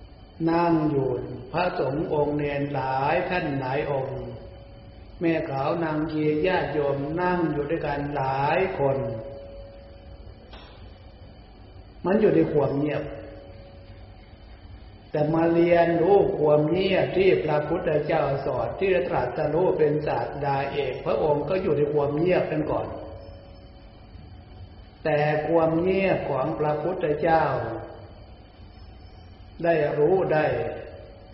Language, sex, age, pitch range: Thai, male, 60-79, 95-155 Hz